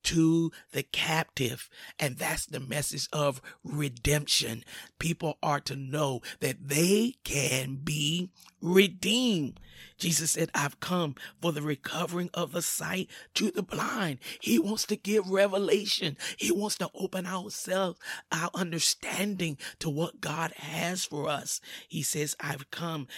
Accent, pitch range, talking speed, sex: American, 145-180 Hz, 135 wpm, male